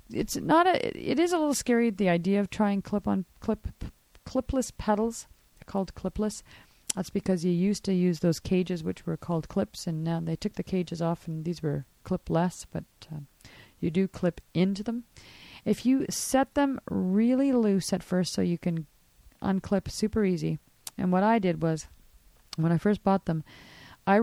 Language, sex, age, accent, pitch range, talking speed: English, female, 40-59, American, 160-205 Hz, 190 wpm